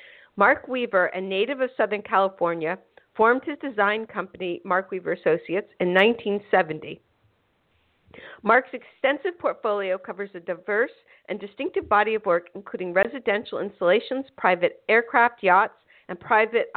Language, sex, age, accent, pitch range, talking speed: English, female, 50-69, American, 185-235 Hz, 125 wpm